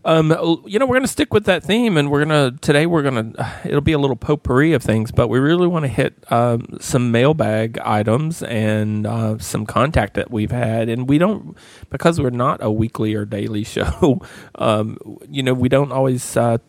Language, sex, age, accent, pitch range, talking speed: English, male, 40-59, American, 105-125 Hz, 205 wpm